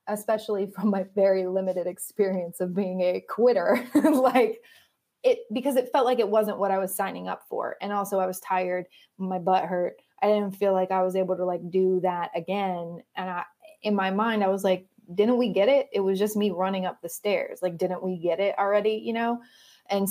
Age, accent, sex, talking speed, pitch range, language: 20-39, American, female, 220 wpm, 175-210 Hz, English